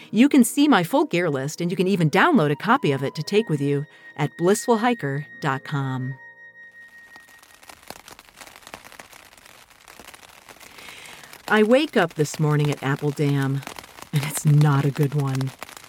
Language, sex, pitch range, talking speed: English, female, 145-205 Hz, 135 wpm